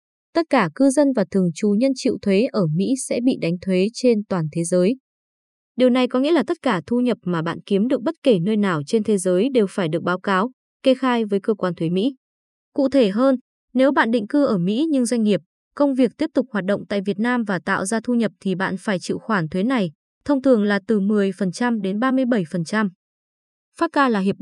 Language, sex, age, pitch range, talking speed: Vietnamese, female, 20-39, 190-255 Hz, 235 wpm